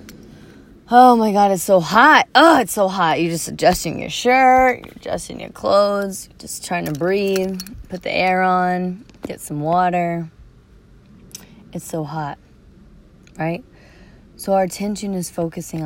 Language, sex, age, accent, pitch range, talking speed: English, female, 30-49, American, 155-190 Hz, 150 wpm